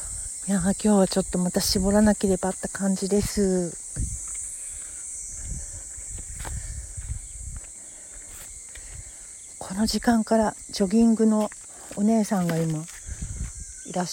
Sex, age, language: female, 60-79, Japanese